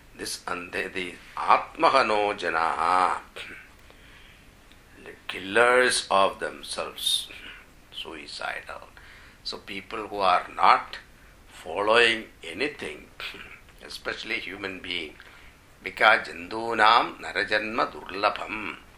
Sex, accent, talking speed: male, Indian, 65 wpm